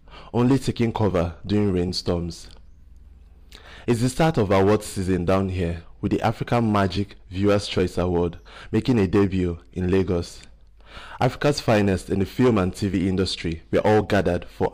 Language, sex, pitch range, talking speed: English, male, 90-110 Hz, 155 wpm